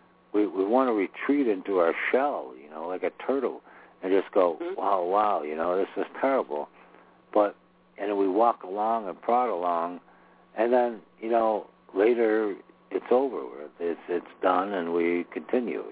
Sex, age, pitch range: male, 60-79, 90-120 Hz